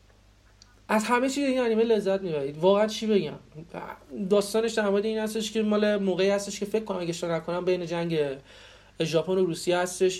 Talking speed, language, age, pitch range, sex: 175 wpm, Persian, 30-49, 150-180 Hz, male